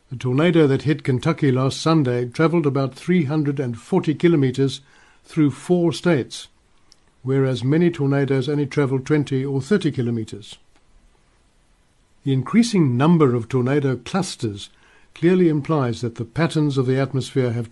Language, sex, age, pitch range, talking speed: English, male, 60-79, 125-155 Hz, 130 wpm